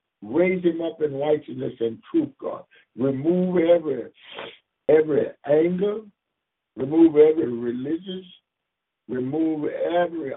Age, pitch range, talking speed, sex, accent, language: 60-79, 125-160 Hz, 100 wpm, male, American, English